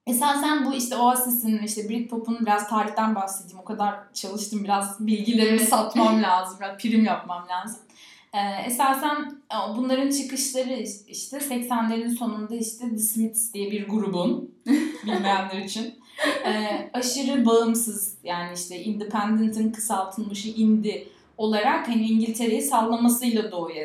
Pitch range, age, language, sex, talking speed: 200-240 Hz, 10-29, Turkish, female, 120 wpm